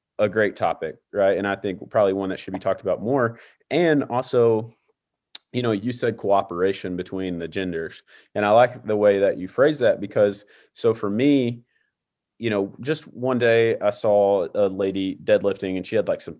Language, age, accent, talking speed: English, 30-49, American, 195 wpm